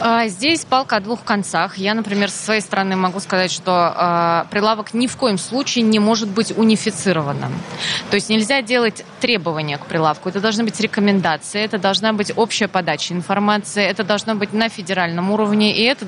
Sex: female